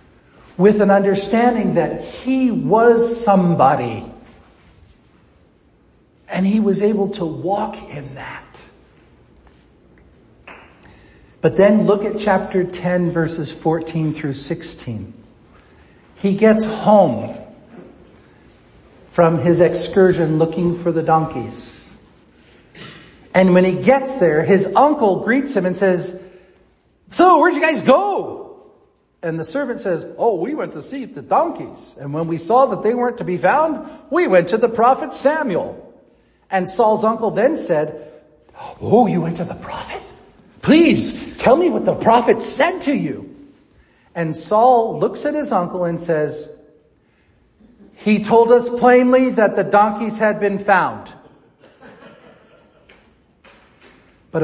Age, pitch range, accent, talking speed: 50-69, 160-230 Hz, American, 130 wpm